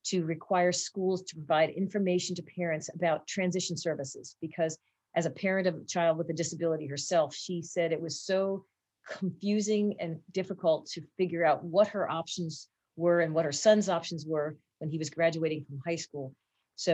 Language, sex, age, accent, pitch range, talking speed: English, female, 40-59, American, 160-185 Hz, 180 wpm